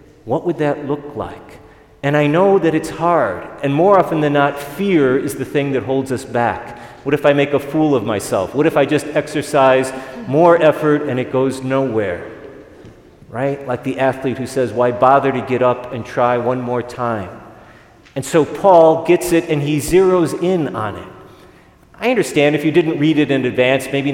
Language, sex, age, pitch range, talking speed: English, male, 40-59, 125-155 Hz, 200 wpm